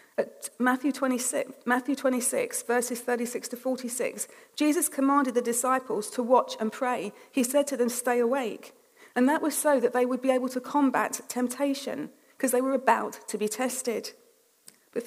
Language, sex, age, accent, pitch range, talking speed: English, female, 40-59, British, 235-280 Hz, 170 wpm